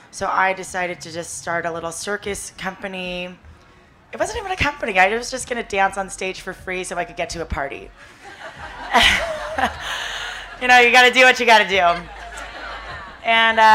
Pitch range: 185-225 Hz